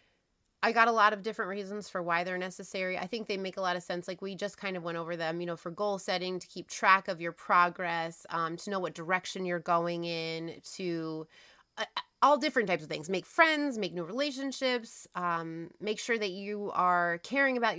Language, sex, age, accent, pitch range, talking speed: English, female, 30-49, American, 170-230 Hz, 225 wpm